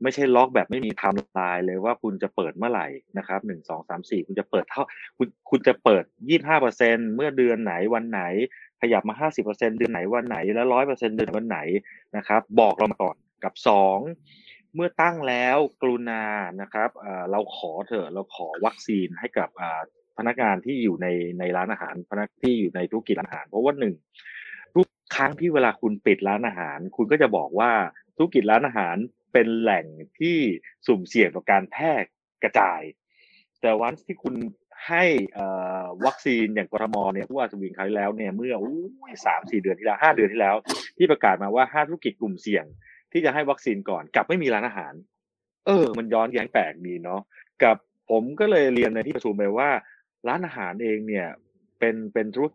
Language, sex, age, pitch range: Thai, male, 30-49, 105-135 Hz